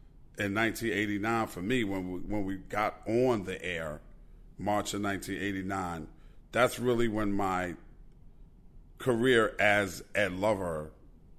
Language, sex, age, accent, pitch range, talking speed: English, male, 40-59, American, 90-110 Hz, 120 wpm